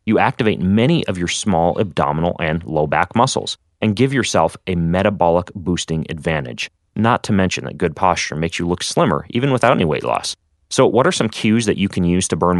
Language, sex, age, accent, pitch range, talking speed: English, male, 30-49, American, 80-110 Hz, 210 wpm